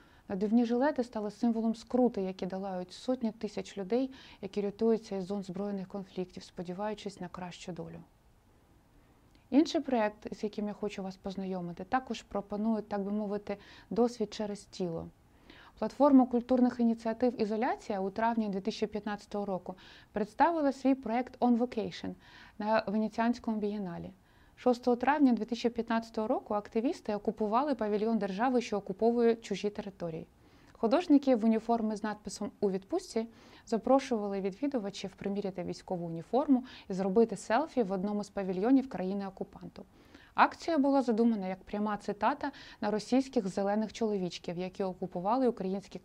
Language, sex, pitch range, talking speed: Ukrainian, female, 195-240 Hz, 125 wpm